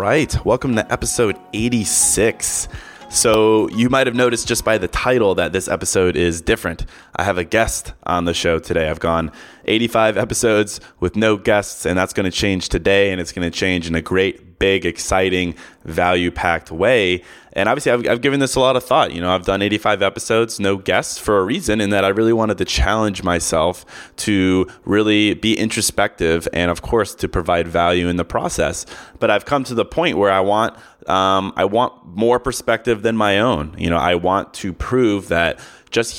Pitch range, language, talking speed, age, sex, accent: 90-110 Hz, English, 200 wpm, 20-39, male, American